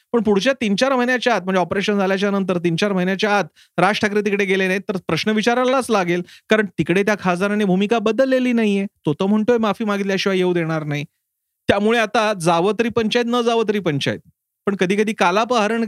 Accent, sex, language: native, male, Marathi